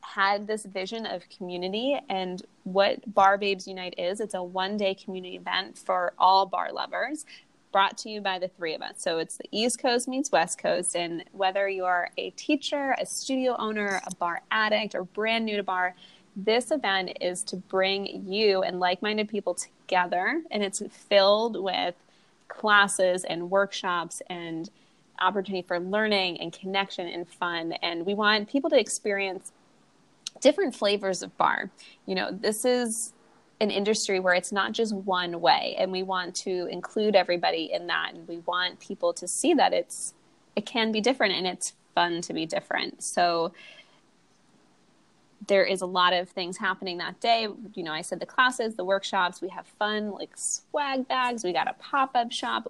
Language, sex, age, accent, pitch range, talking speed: English, female, 20-39, American, 180-220 Hz, 175 wpm